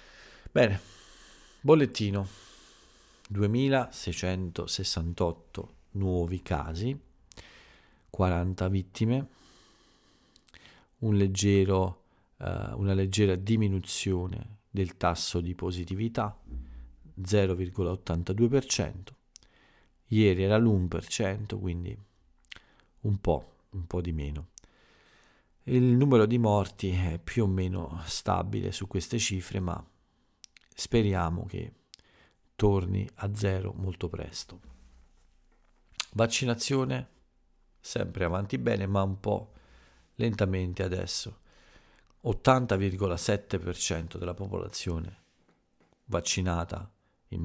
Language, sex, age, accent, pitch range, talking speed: Italian, male, 40-59, native, 90-105 Hz, 80 wpm